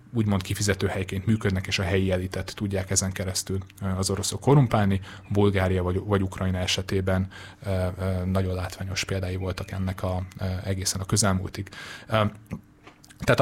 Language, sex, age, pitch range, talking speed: Hungarian, male, 30-49, 95-105 Hz, 125 wpm